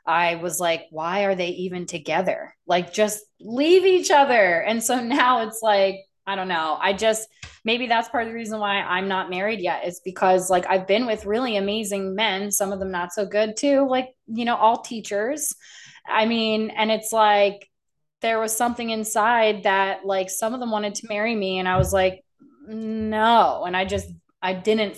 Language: English